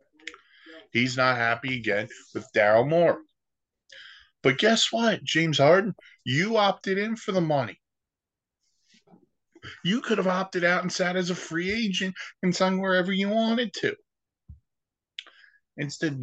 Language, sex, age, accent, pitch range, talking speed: English, male, 20-39, American, 130-180 Hz, 135 wpm